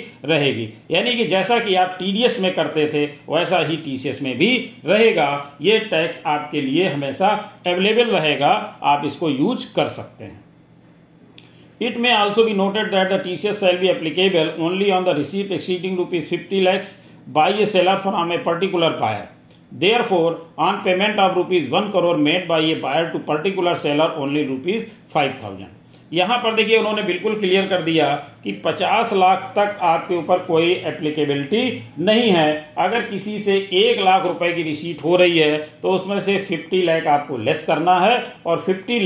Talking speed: 150 wpm